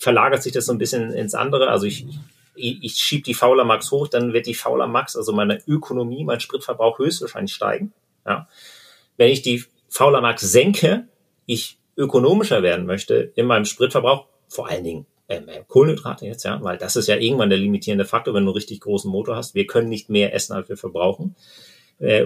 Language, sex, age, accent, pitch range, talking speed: German, male, 40-59, German, 120-160 Hz, 200 wpm